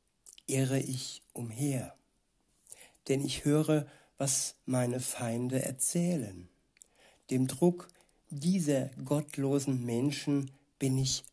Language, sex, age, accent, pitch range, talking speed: German, male, 60-79, German, 130-145 Hz, 90 wpm